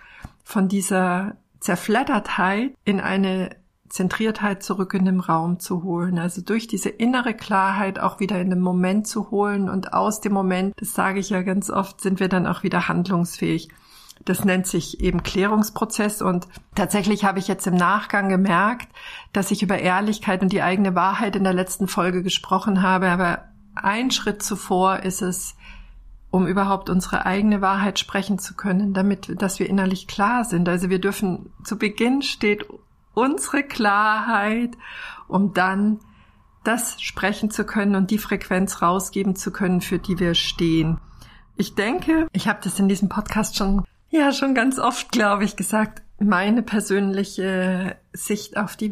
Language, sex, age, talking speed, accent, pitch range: German, female, 50-69, 160 wpm, German, 185-210 Hz